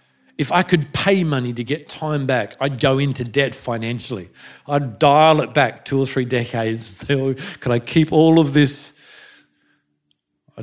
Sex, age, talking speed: male, 40-59, 180 wpm